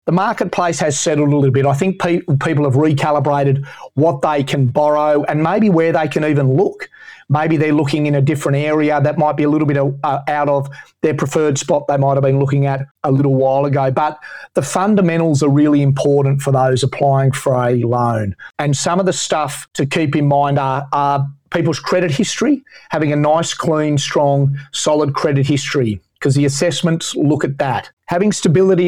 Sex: male